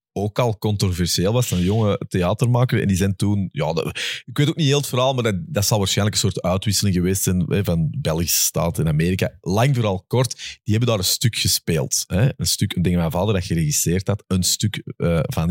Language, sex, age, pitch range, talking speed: Dutch, male, 30-49, 95-130 Hz, 225 wpm